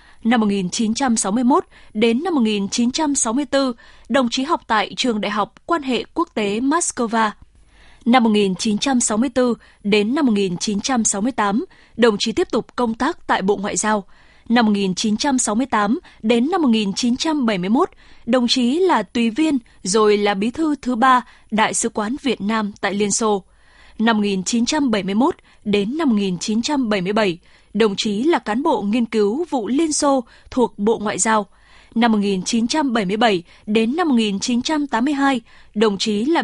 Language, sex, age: Vietnamese, female, 20-39